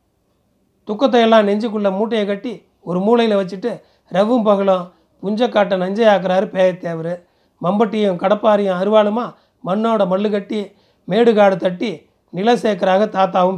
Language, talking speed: Tamil, 105 wpm